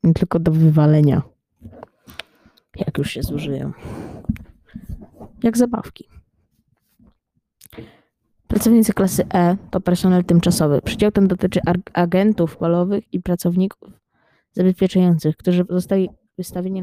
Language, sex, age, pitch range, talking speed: Polish, female, 20-39, 175-210 Hz, 100 wpm